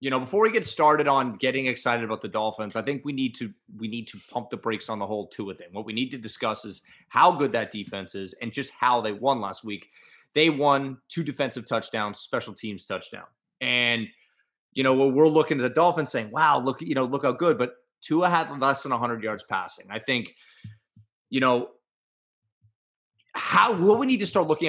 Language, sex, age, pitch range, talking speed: English, male, 20-39, 115-150 Hz, 220 wpm